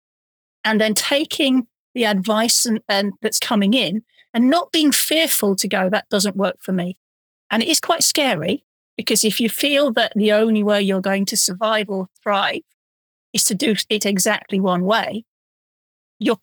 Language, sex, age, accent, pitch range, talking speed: English, female, 40-59, British, 200-240 Hz, 175 wpm